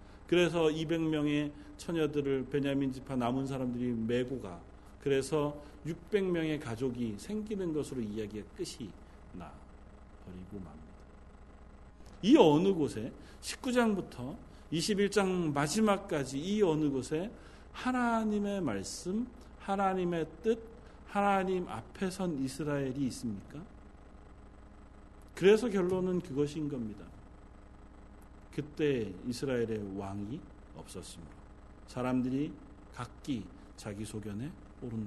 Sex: male